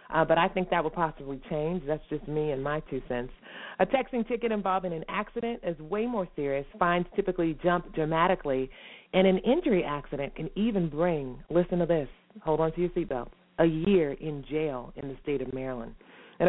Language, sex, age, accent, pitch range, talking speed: English, female, 30-49, American, 155-200 Hz, 195 wpm